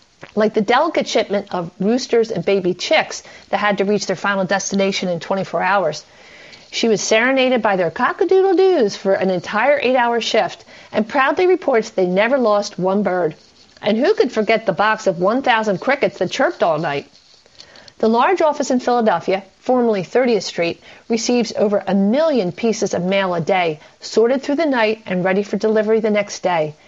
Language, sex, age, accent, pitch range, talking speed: English, female, 50-69, American, 195-245 Hz, 180 wpm